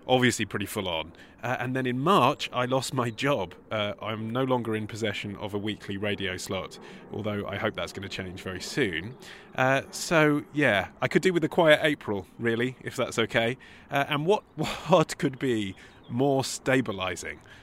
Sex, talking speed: male, 180 wpm